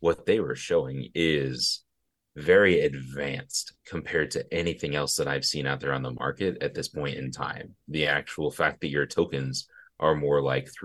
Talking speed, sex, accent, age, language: 185 wpm, male, American, 30-49, English